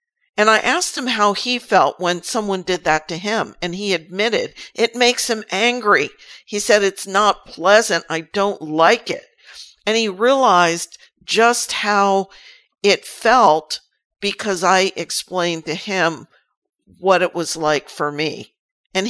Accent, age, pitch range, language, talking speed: American, 50-69, 175-215 Hz, English, 150 wpm